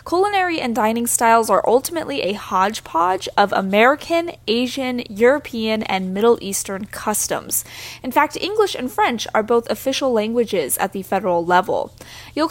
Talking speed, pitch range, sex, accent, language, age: 145 wpm, 205-285 Hz, female, American, English, 10-29